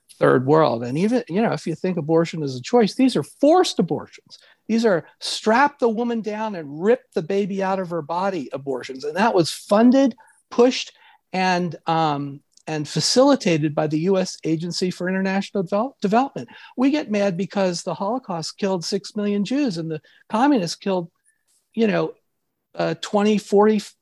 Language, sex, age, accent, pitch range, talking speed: English, male, 50-69, American, 155-220 Hz, 170 wpm